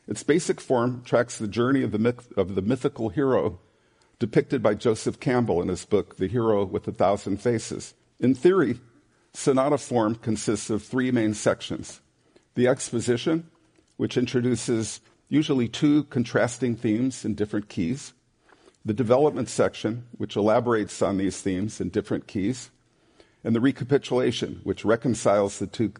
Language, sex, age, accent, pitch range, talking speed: English, male, 50-69, American, 100-130 Hz, 145 wpm